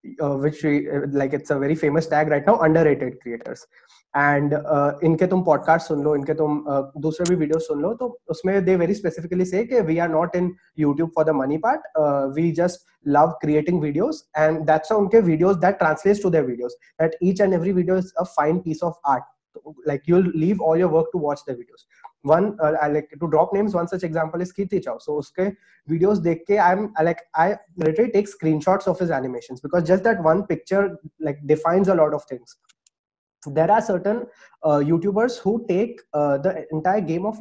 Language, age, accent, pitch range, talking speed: English, 20-39, Indian, 155-190 Hz, 185 wpm